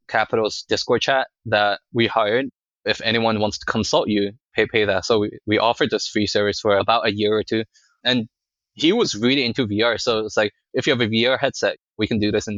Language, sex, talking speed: English, male, 230 wpm